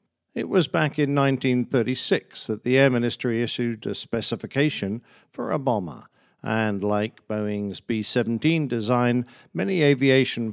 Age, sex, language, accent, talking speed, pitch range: 50-69, male, English, British, 125 wpm, 115-145 Hz